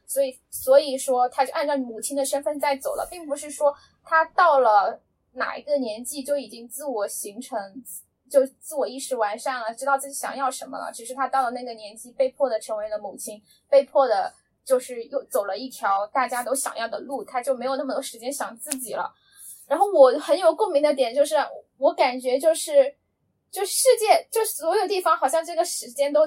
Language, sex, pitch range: Chinese, female, 250-310 Hz